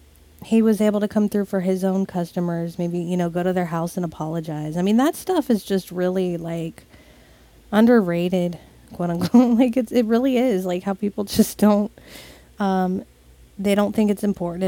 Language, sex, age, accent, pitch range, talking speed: English, female, 20-39, American, 170-195 Hz, 185 wpm